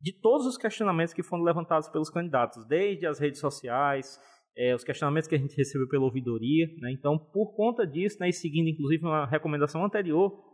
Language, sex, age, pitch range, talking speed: Portuguese, male, 20-39, 135-175 Hz, 195 wpm